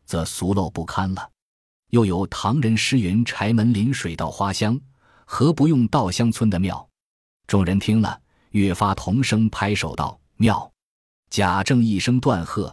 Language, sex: Chinese, male